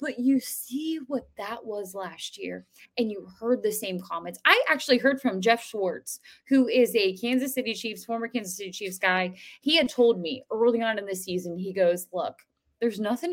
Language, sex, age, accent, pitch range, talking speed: English, female, 20-39, American, 175-235 Hz, 205 wpm